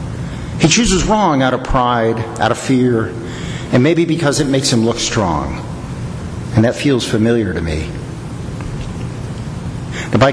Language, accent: English, American